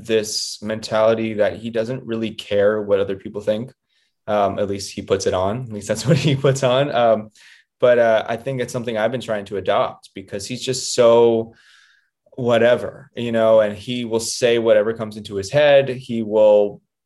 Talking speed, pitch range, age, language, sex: 195 wpm, 100-120 Hz, 20-39, English, male